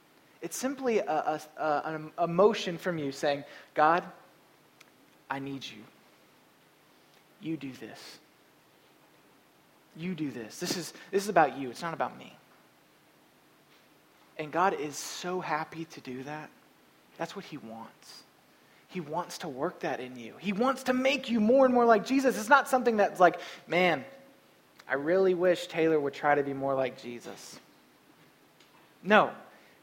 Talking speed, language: 155 wpm, English